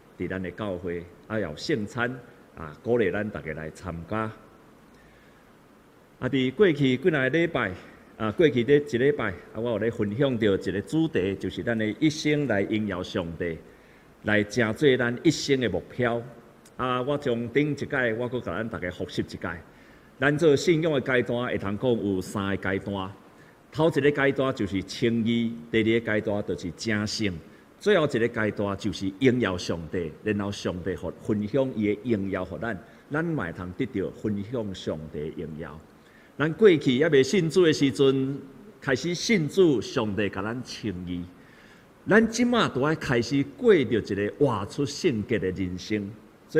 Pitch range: 100-140 Hz